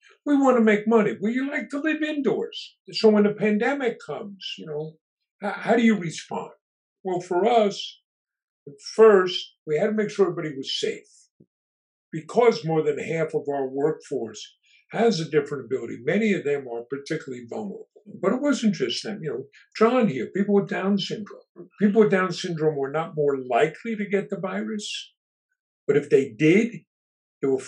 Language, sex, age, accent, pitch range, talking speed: English, male, 50-69, American, 160-225 Hz, 175 wpm